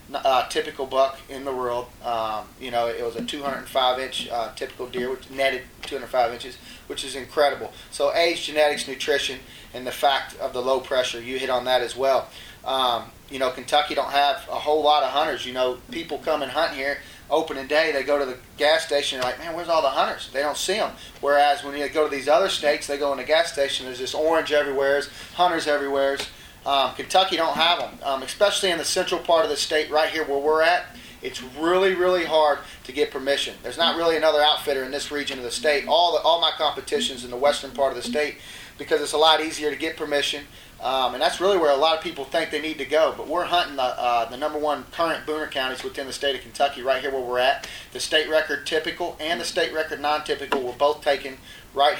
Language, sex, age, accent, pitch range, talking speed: English, male, 30-49, American, 130-155 Hz, 235 wpm